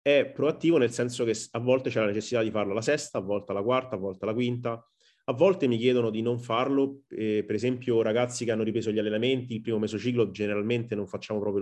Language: Italian